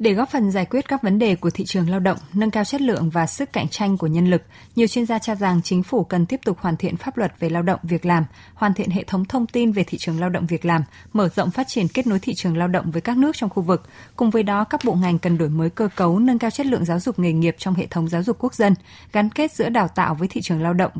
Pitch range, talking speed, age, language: 170-225 Hz, 310 wpm, 20-39, Vietnamese